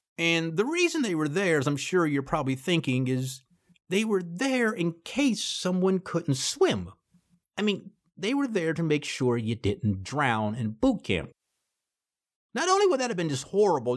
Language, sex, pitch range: English, male, 115-175 Hz